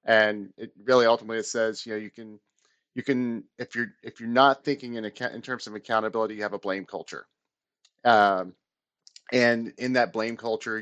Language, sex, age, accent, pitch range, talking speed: English, male, 40-59, American, 105-125 Hz, 195 wpm